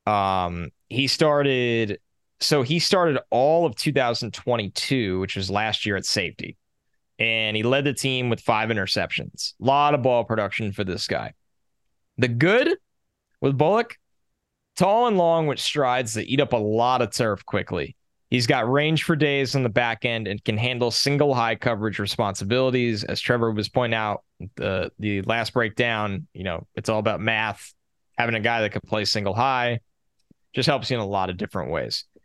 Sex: male